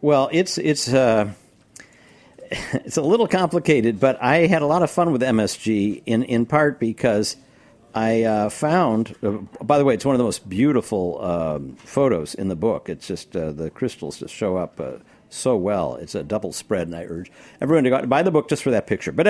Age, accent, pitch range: 60-79, American, 105-140 Hz